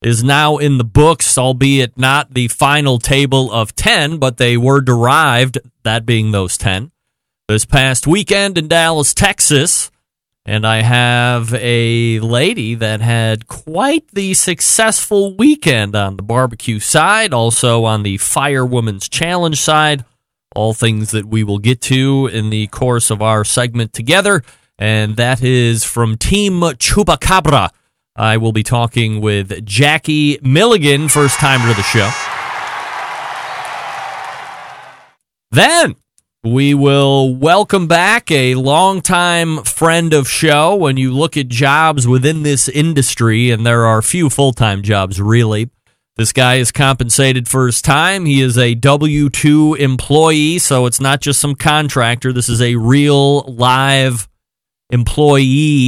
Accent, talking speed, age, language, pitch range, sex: American, 135 wpm, 30-49, English, 115-150 Hz, male